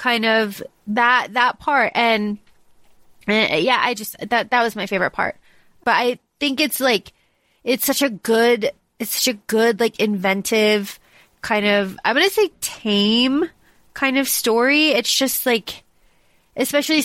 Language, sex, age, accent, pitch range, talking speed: English, female, 20-39, American, 210-250 Hz, 155 wpm